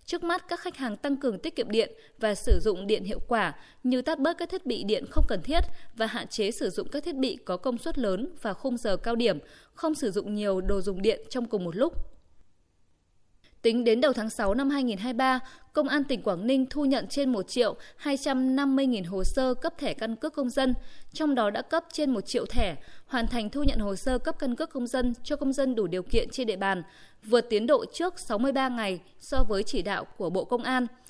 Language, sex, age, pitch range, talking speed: Vietnamese, female, 20-39, 215-275 Hz, 235 wpm